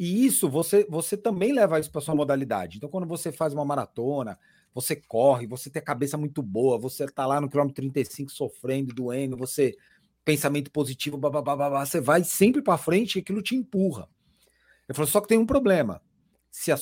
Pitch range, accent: 135-185 Hz, Brazilian